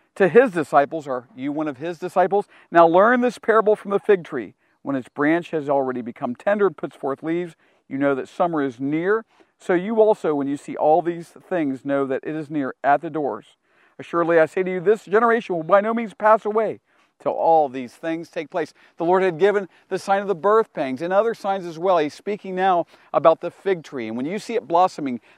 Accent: American